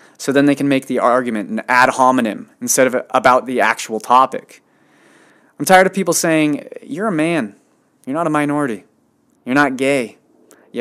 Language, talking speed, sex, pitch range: English, 180 wpm, male, 120-170 Hz